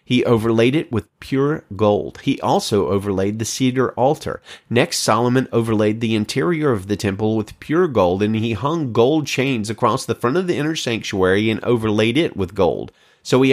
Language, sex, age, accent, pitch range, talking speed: English, male, 30-49, American, 105-135 Hz, 185 wpm